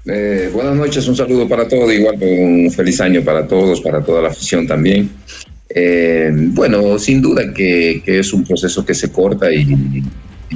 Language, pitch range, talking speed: Spanish, 70-90 Hz, 180 wpm